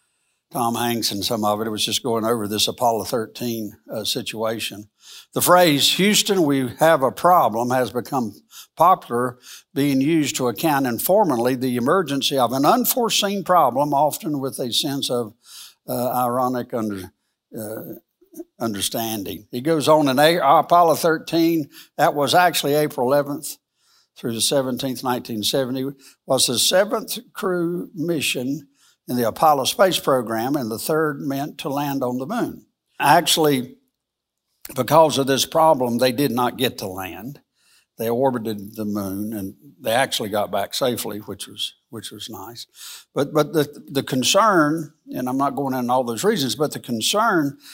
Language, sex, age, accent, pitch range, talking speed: English, male, 60-79, American, 120-155 Hz, 155 wpm